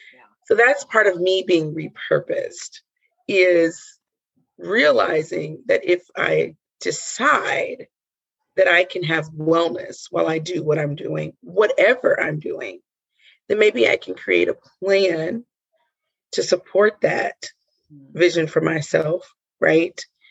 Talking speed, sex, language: 120 wpm, female, English